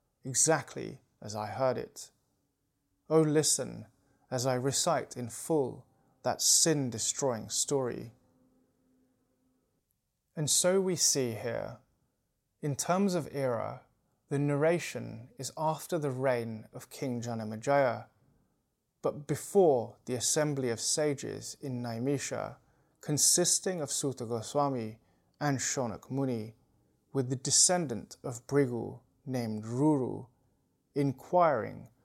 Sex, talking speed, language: male, 105 wpm, English